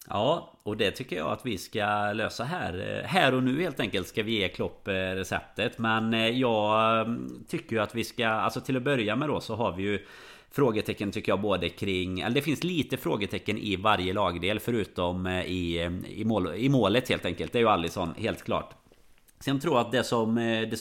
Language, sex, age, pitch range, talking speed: Swedish, male, 30-49, 90-115 Hz, 200 wpm